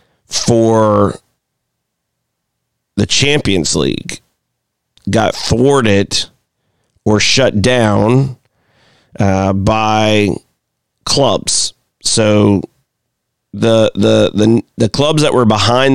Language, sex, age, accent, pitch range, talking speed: English, male, 40-59, American, 105-120 Hz, 80 wpm